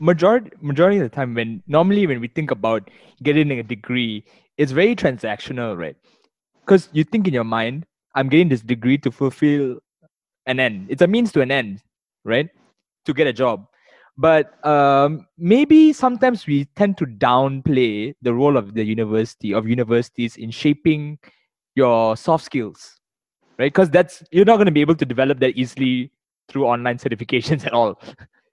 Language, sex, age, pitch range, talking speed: English, male, 20-39, 125-165 Hz, 170 wpm